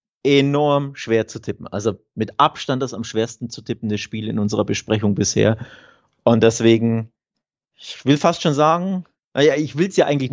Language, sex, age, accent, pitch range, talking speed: German, male, 30-49, German, 115-150 Hz, 175 wpm